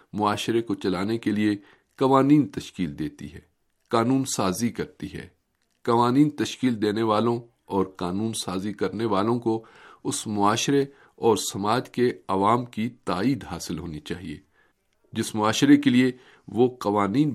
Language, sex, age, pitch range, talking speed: Urdu, male, 50-69, 95-120 Hz, 140 wpm